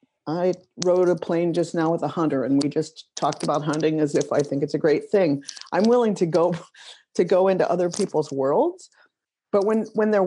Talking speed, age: 215 wpm, 50-69